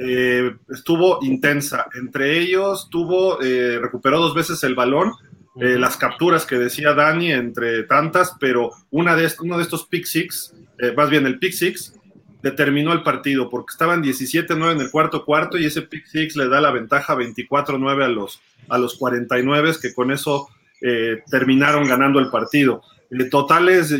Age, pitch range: 30-49, 130-165 Hz